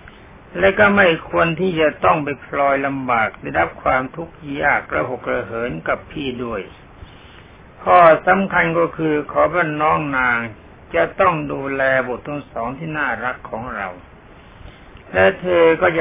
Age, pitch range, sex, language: 60-79, 120-165 Hz, male, Thai